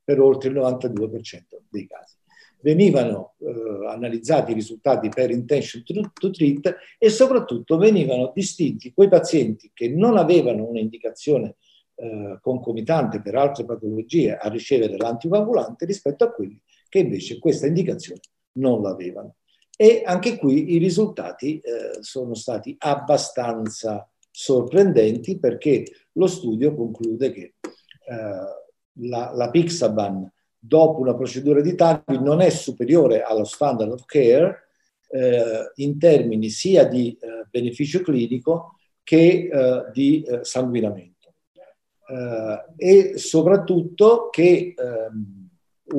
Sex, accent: male, Italian